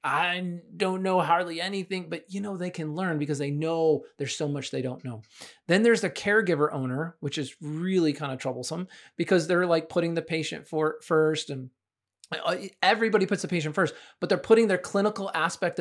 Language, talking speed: English, 195 wpm